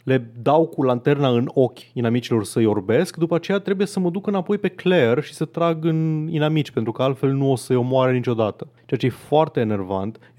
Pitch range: 115-135 Hz